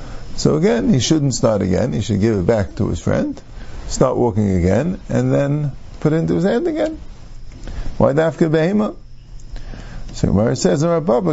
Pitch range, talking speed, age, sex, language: 105-145 Hz, 155 wpm, 50-69, male, English